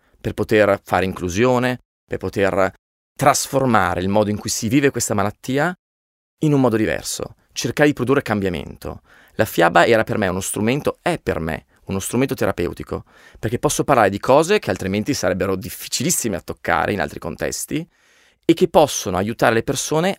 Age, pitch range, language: 30-49, 90-120 Hz, Italian